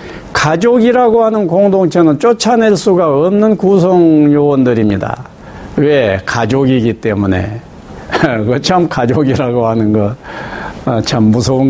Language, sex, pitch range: Korean, male, 125-205 Hz